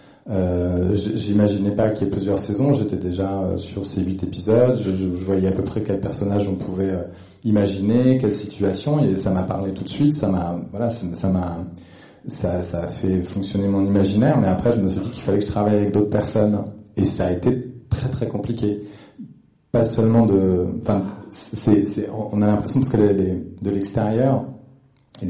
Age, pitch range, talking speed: 40-59, 95-115 Hz, 200 wpm